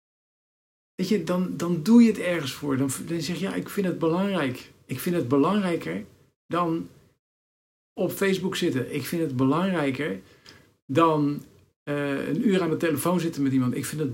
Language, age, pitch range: Dutch, 50-69, 125-165 Hz